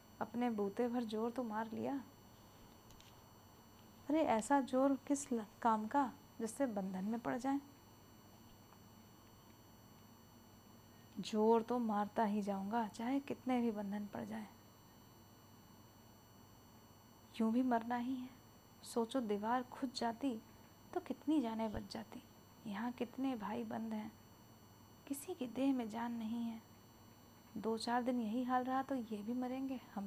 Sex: female